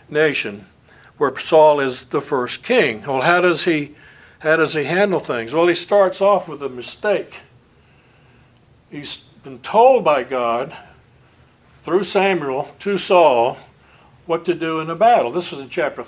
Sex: male